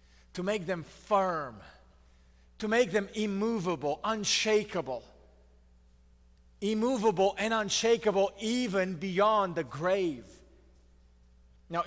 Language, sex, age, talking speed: English, male, 40-59, 85 wpm